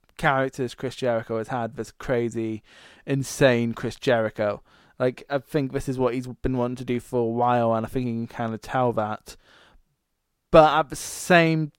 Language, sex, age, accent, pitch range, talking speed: English, male, 20-39, British, 120-160 Hz, 190 wpm